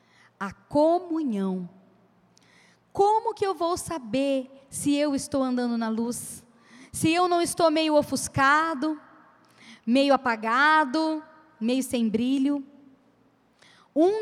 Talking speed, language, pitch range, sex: 105 wpm, Portuguese, 235-275 Hz, female